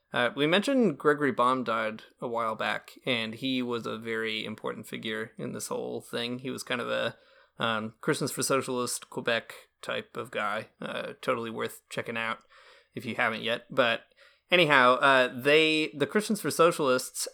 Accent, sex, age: American, male, 20-39